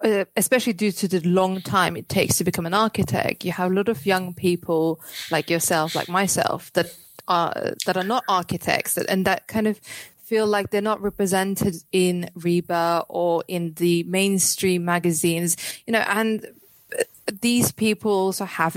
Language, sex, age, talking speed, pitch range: English, female, 20-39, 170 wpm, 170-205 Hz